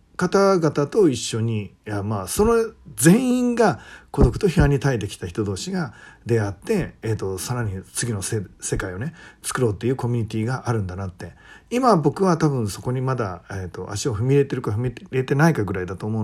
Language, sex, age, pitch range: Japanese, male, 40-59, 105-145 Hz